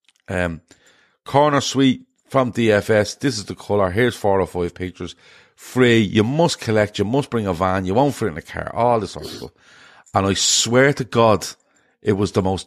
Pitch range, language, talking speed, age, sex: 95-120 Hz, English, 205 wpm, 40-59, male